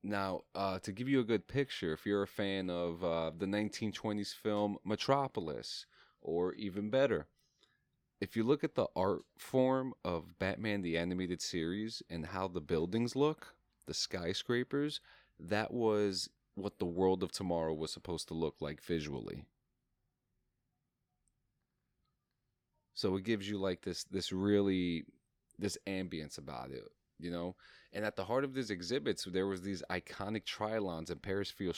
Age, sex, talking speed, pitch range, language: 30-49, male, 155 wpm, 90-110 Hz, English